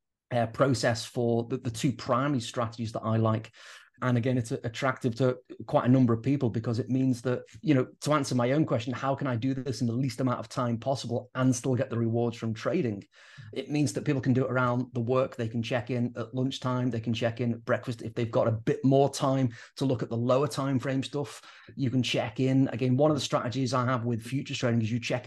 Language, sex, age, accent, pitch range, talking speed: English, male, 30-49, British, 120-135 Hz, 250 wpm